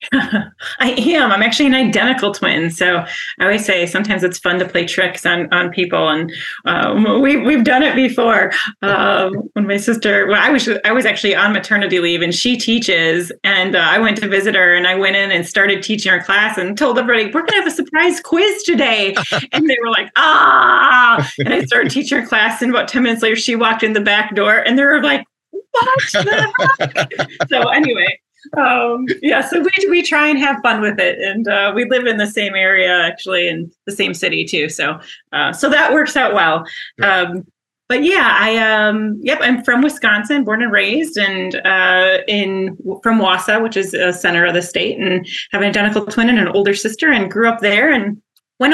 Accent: American